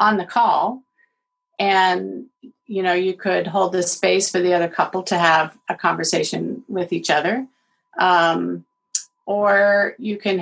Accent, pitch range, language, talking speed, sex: American, 190-250 Hz, English, 150 wpm, female